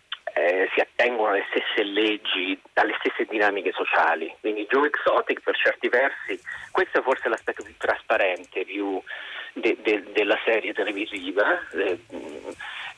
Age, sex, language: 30-49, male, Italian